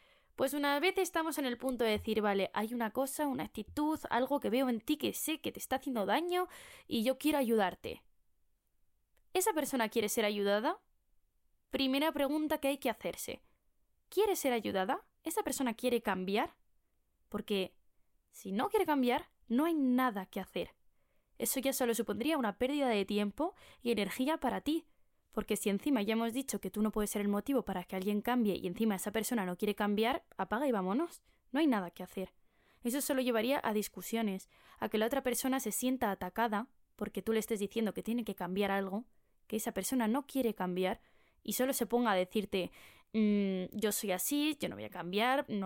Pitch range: 205-275 Hz